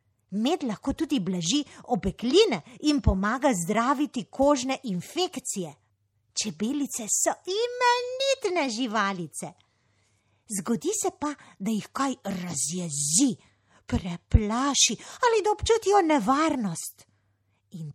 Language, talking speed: Italian, 85 wpm